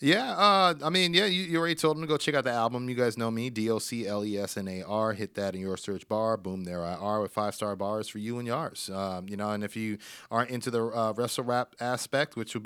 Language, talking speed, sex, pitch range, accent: English, 250 wpm, male, 105-130 Hz, American